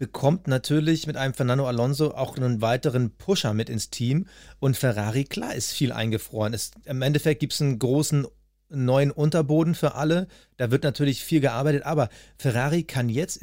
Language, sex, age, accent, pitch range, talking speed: German, male, 40-59, German, 120-155 Hz, 170 wpm